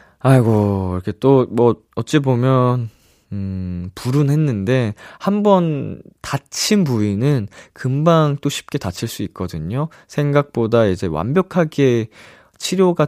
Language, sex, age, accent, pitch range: Korean, male, 20-39, native, 95-140 Hz